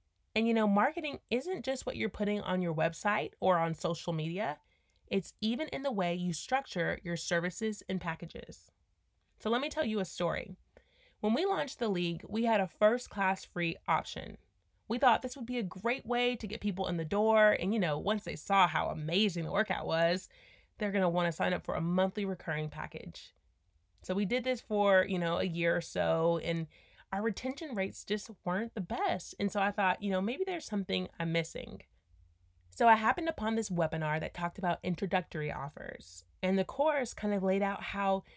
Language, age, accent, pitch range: English, 30-49, American, 170-220 Hz